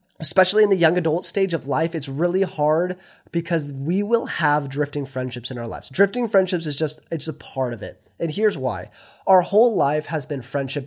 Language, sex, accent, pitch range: English, male, American, 125-170 Hz